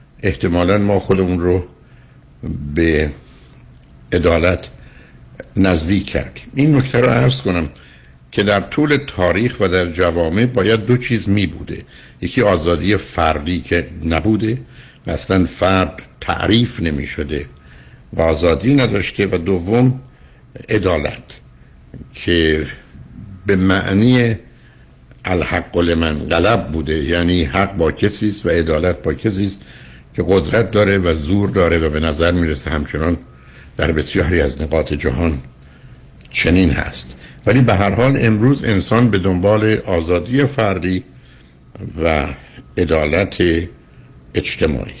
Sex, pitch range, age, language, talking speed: male, 80-105 Hz, 60-79, Persian, 115 wpm